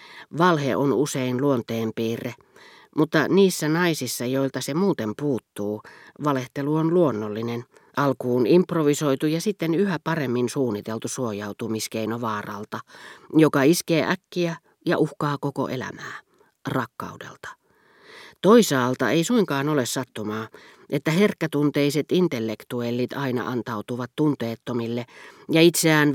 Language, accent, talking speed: Finnish, native, 100 wpm